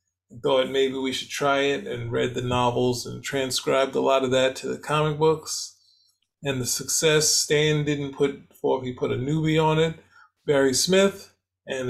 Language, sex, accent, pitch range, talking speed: English, male, American, 120-150 Hz, 180 wpm